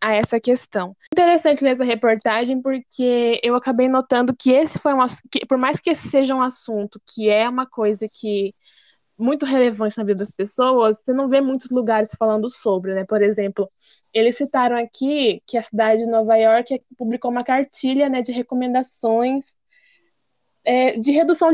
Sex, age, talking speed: female, 10-29, 165 wpm